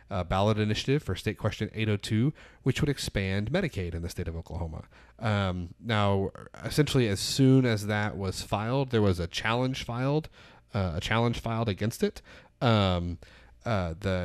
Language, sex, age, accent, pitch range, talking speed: English, male, 30-49, American, 95-120 Hz, 165 wpm